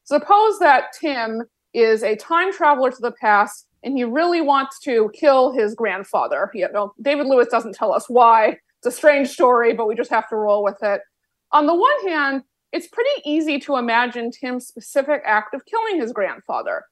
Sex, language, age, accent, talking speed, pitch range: female, English, 30-49, American, 190 wpm, 230-305 Hz